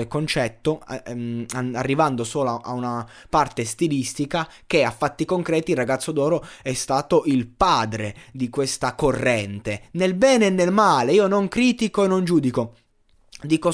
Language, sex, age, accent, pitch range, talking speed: Italian, male, 20-39, native, 120-185 Hz, 145 wpm